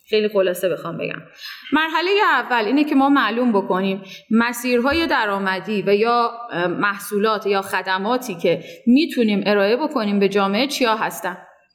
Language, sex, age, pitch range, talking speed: Persian, female, 30-49, 200-275 Hz, 135 wpm